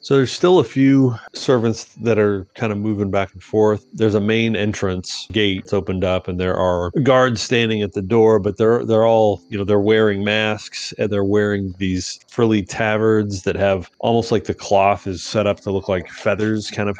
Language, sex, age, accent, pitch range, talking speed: English, male, 30-49, American, 95-110 Hz, 210 wpm